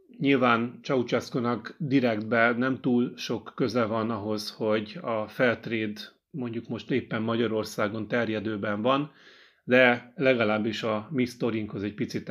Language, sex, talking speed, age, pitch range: Hungarian, male, 120 wpm, 30-49, 110-130 Hz